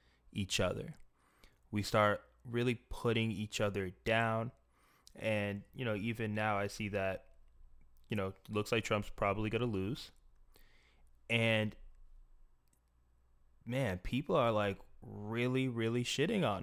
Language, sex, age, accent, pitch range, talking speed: English, male, 20-39, American, 95-110 Hz, 125 wpm